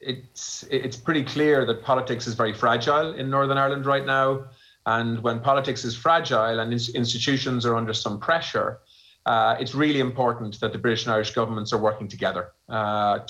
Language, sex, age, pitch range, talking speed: English, male, 30-49, 115-135 Hz, 175 wpm